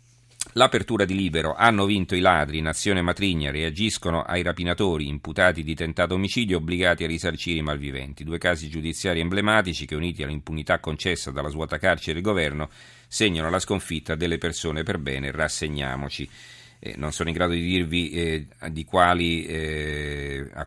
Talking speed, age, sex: 150 wpm, 40-59, male